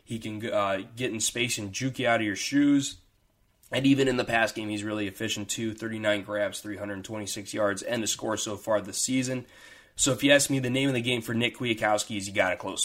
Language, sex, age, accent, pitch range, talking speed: English, male, 20-39, American, 105-120 Hz, 260 wpm